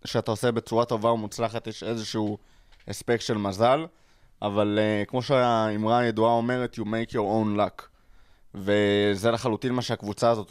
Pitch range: 110-135 Hz